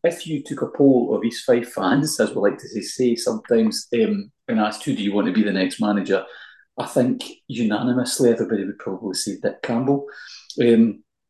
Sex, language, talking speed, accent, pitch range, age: male, English, 200 wpm, British, 110-150 Hz, 40-59